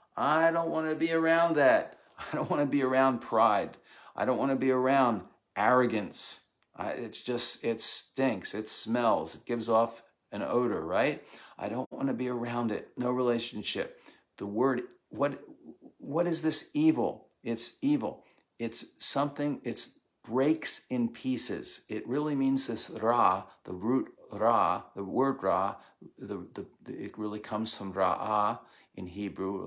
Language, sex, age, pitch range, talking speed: English, male, 50-69, 110-145 Hz, 150 wpm